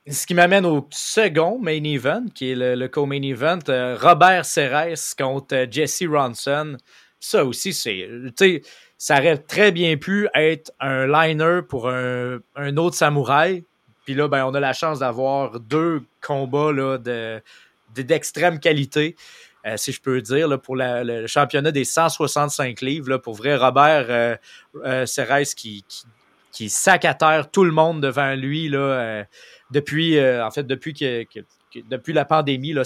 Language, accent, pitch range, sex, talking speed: French, Canadian, 130-165 Hz, male, 155 wpm